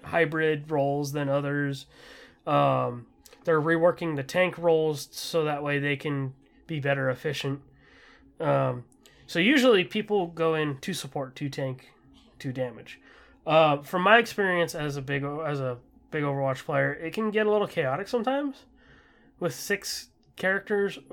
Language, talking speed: English, 150 wpm